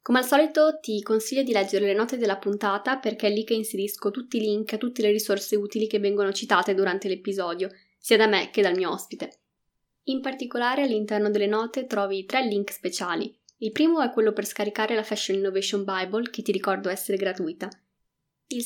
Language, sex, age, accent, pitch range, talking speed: Italian, female, 10-29, native, 205-245 Hz, 195 wpm